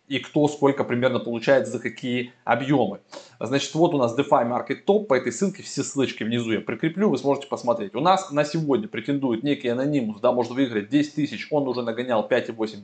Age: 20-39